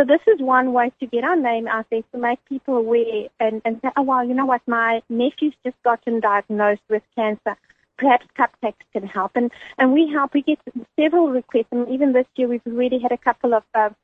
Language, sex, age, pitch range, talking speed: English, female, 30-49, 225-270 Hz, 225 wpm